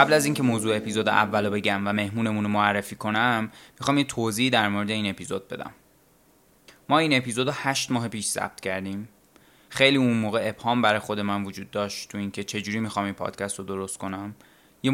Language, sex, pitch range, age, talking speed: Persian, male, 100-120 Hz, 20-39, 190 wpm